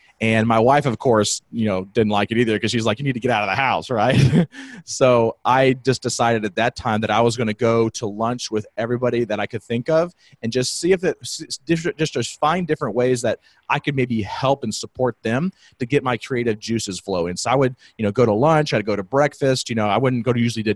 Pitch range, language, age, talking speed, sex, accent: 110-135 Hz, English, 30-49, 255 wpm, male, American